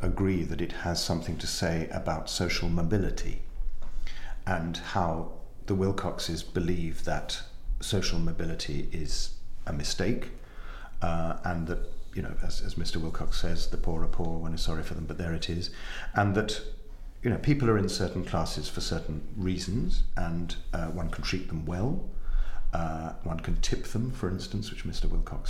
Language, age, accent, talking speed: English, 40-59, British, 170 wpm